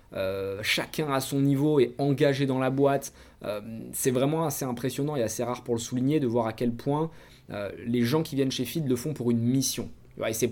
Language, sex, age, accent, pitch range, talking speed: French, male, 20-39, French, 120-160 Hz, 235 wpm